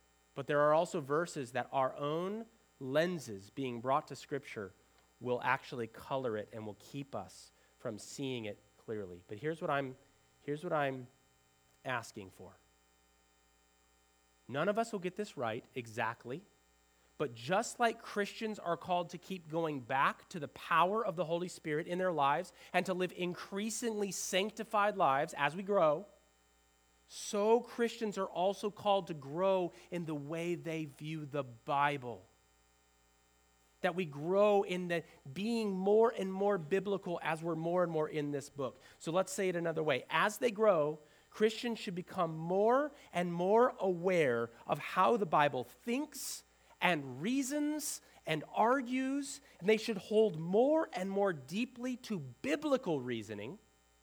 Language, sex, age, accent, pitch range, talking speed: English, male, 30-49, American, 125-200 Hz, 155 wpm